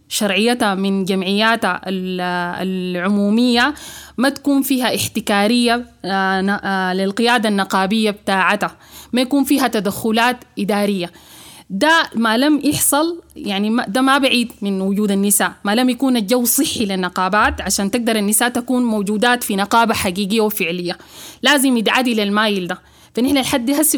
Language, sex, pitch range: English, female, 205-265 Hz